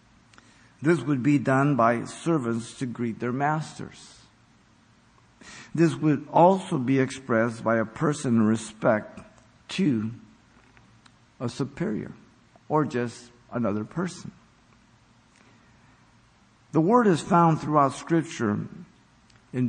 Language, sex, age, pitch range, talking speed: English, male, 50-69, 120-155 Hz, 105 wpm